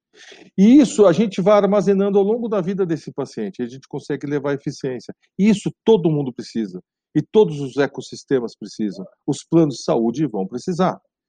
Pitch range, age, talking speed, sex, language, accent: 135-190 Hz, 50-69, 170 wpm, male, Portuguese, Brazilian